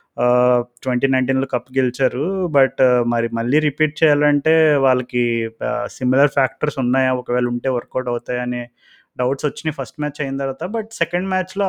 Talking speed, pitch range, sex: 135 wpm, 125-150 Hz, male